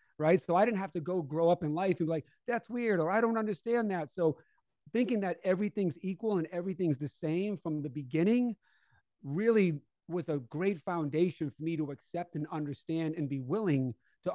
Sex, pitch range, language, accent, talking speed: male, 145-175 Hz, English, American, 200 wpm